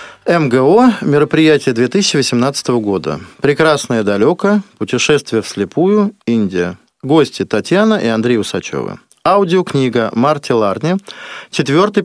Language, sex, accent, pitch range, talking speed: Russian, male, native, 115-180 Hz, 95 wpm